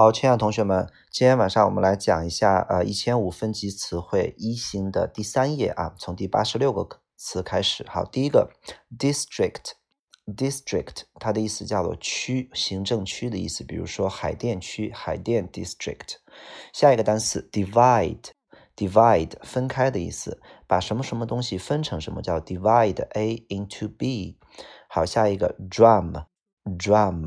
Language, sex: Chinese, male